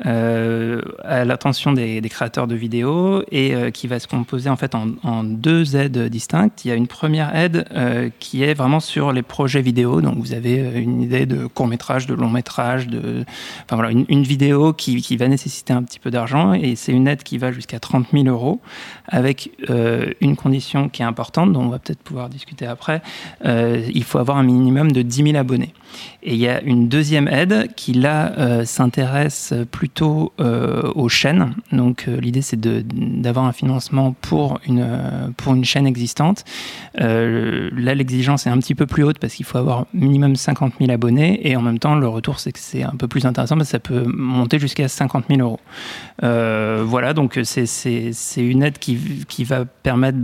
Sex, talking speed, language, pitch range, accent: male, 205 wpm, French, 120-140 Hz, French